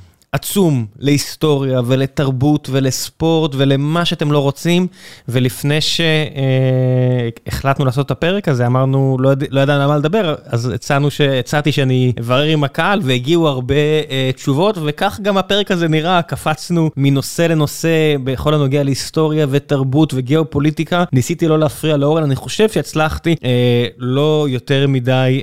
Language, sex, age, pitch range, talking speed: Hebrew, male, 20-39, 125-155 Hz, 135 wpm